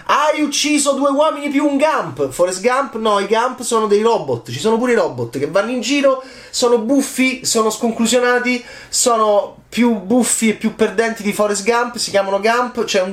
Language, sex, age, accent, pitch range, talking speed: Italian, male, 30-49, native, 160-235 Hz, 195 wpm